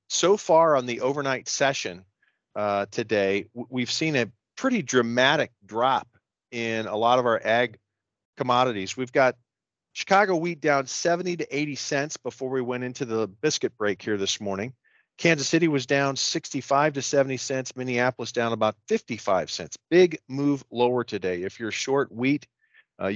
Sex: male